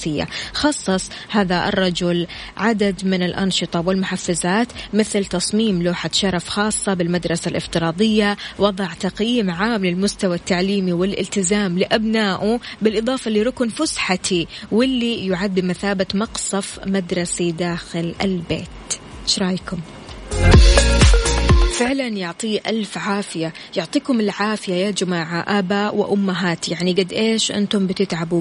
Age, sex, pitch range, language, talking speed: 20-39, female, 185-220 Hz, Arabic, 100 wpm